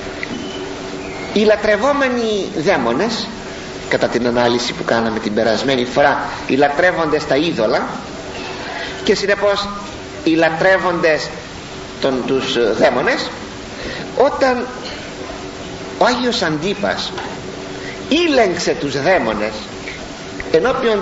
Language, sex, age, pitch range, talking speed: Greek, male, 50-69, 120-200 Hz, 85 wpm